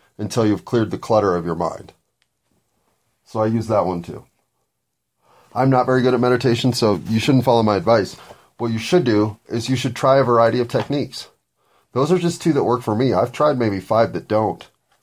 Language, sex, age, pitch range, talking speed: English, male, 30-49, 100-125 Hz, 210 wpm